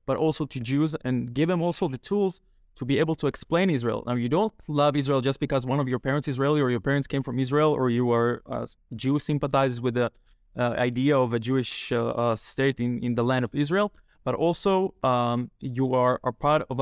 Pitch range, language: 125-155 Hz, English